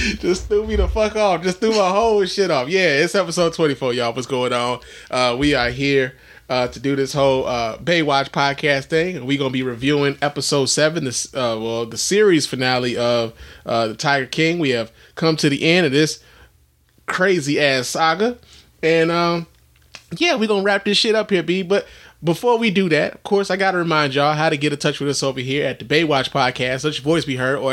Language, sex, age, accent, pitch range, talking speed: English, male, 20-39, American, 130-170 Hz, 220 wpm